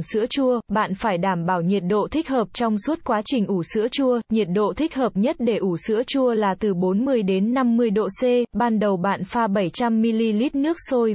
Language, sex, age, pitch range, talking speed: Vietnamese, female, 20-39, 195-245 Hz, 215 wpm